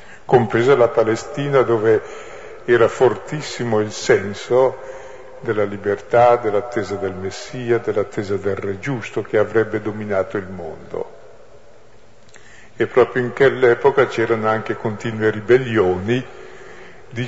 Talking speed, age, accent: 110 wpm, 50-69, native